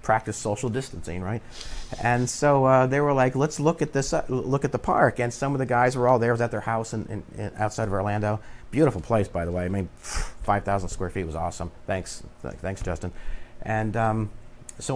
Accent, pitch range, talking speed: American, 95-125 Hz, 230 wpm